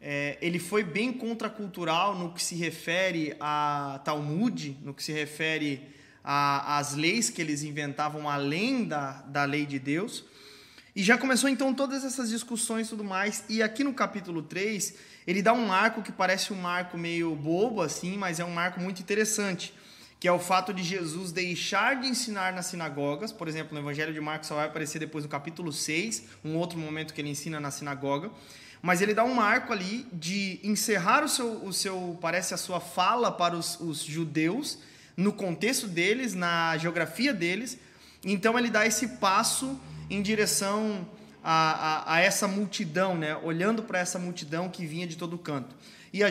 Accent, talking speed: Brazilian, 180 wpm